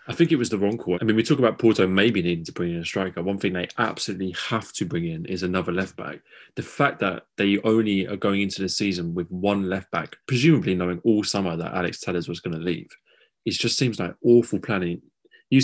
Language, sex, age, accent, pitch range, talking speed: English, male, 20-39, British, 90-105 Hz, 240 wpm